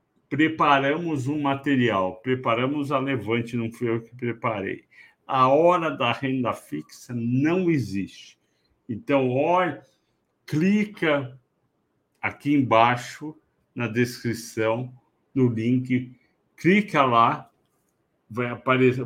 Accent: Brazilian